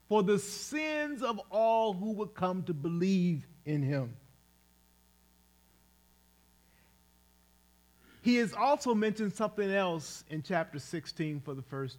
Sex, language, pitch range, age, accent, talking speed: male, English, 130-200 Hz, 40-59, American, 120 wpm